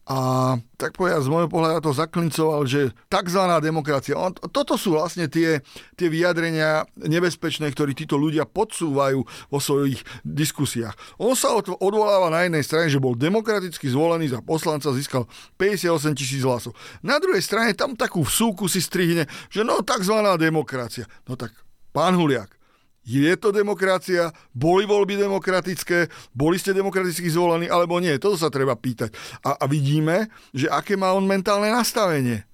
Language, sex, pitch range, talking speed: Slovak, male, 125-175 Hz, 155 wpm